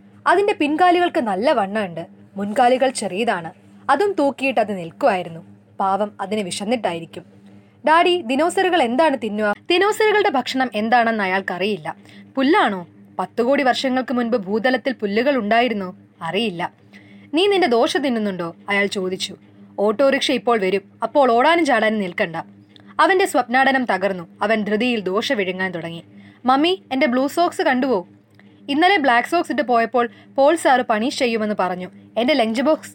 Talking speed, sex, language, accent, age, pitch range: 120 wpm, female, Malayalam, native, 20-39, 185-290 Hz